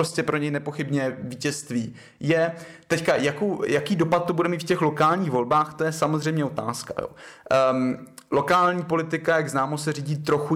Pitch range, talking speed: 130-155 Hz, 155 wpm